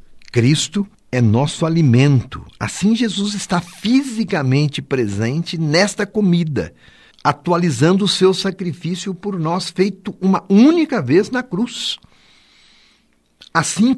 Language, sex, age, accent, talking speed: Portuguese, male, 60-79, Brazilian, 105 wpm